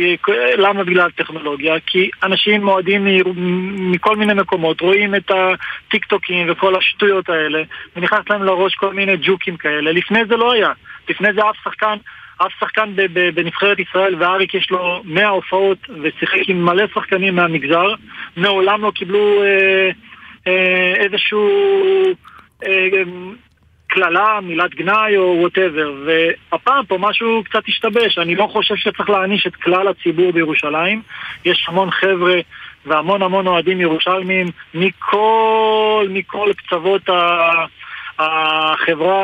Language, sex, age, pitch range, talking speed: Hebrew, male, 40-59, 175-210 Hz, 120 wpm